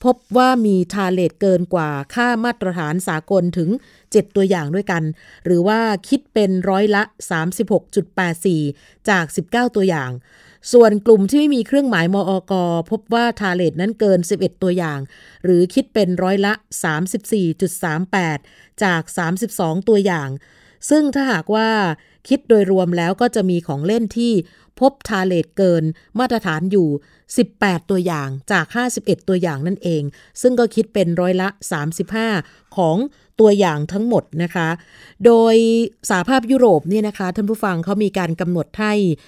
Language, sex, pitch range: Thai, female, 175-225 Hz